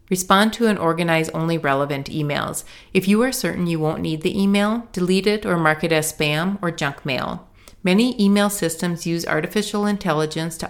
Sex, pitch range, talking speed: female, 155-195 Hz, 185 wpm